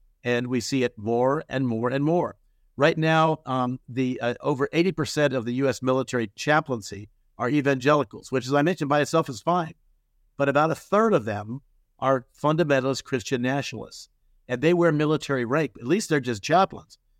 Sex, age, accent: male, 50-69, American